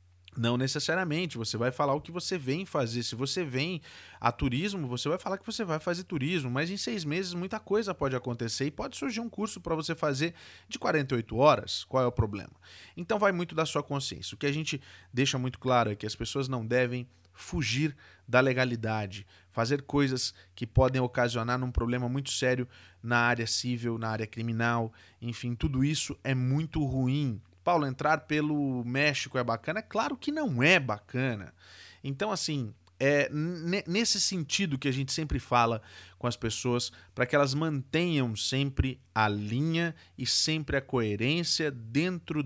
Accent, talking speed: Brazilian, 180 wpm